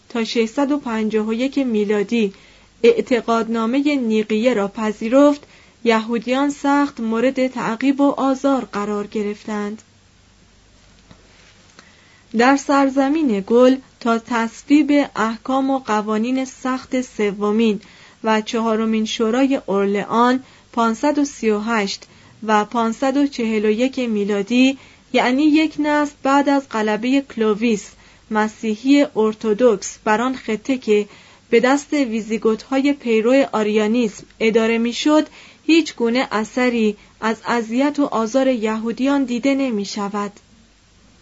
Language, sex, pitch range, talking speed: Persian, female, 215-270 Hz, 90 wpm